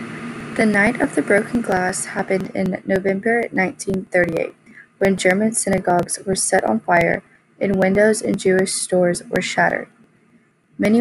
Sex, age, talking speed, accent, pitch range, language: female, 20-39, 135 wpm, American, 185-210 Hz, English